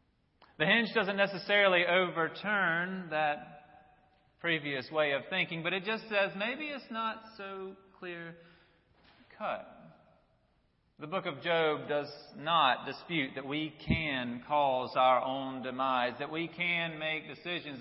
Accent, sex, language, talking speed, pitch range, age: American, male, English, 130 wpm, 125-165 Hz, 40-59